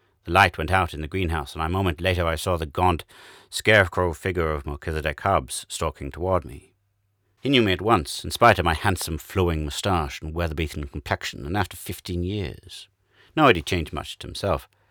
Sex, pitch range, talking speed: male, 75-95 Hz, 200 wpm